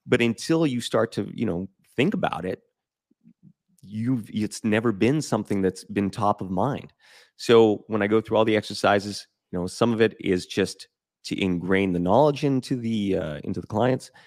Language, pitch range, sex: English, 90-110 Hz, male